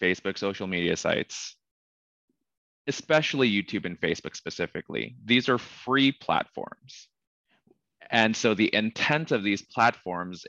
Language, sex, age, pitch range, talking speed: English, male, 20-39, 95-125 Hz, 115 wpm